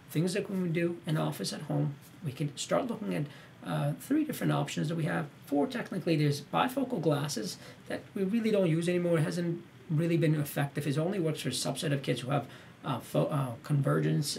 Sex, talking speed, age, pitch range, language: male, 220 wpm, 40-59, 140-185 Hz, English